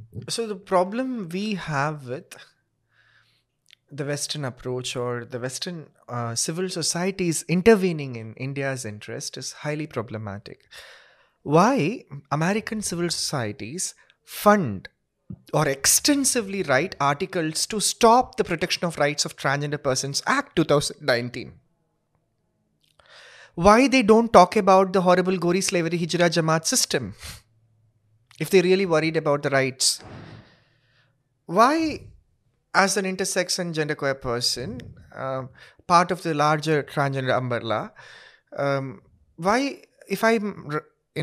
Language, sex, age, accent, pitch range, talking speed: Hindi, male, 30-49, native, 135-190 Hz, 120 wpm